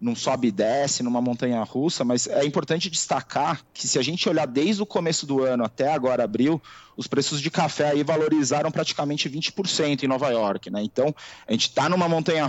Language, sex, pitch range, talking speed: Portuguese, male, 120-150 Hz, 200 wpm